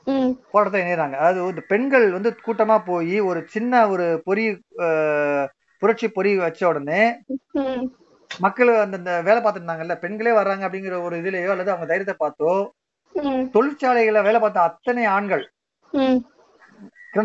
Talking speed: 75 wpm